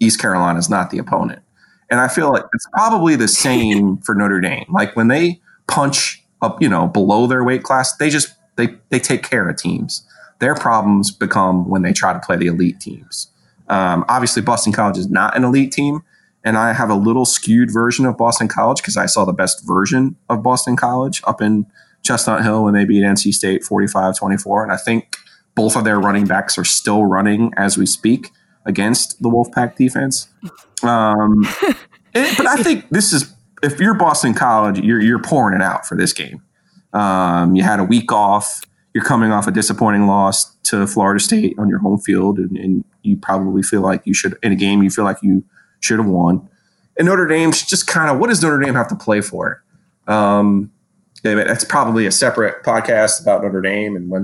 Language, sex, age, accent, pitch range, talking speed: English, male, 30-49, American, 100-125 Hz, 200 wpm